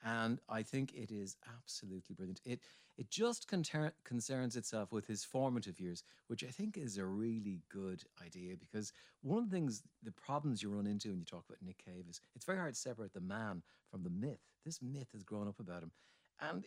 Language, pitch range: English, 100-135 Hz